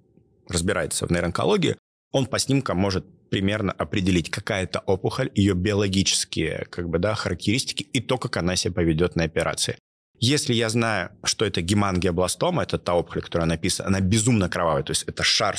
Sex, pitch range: male, 95-115 Hz